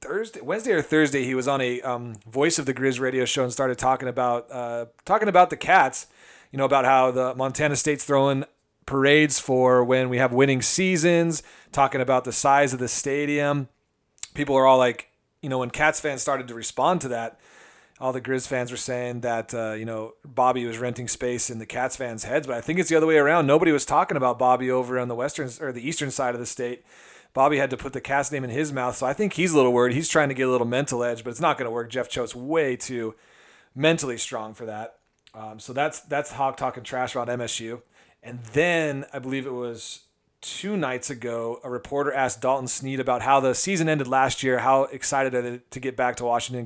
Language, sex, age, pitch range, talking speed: English, male, 40-59, 120-140 Hz, 235 wpm